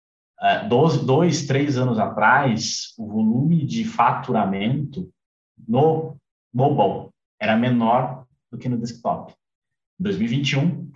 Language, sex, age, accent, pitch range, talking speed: Portuguese, male, 20-39, Brazilian, 110-175 Hz, 105 wpm